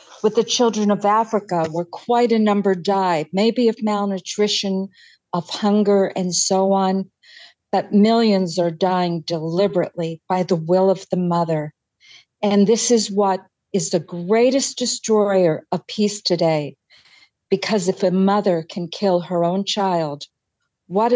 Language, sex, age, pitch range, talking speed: English, female, 50-69, 175-210 Hz, 140 wpm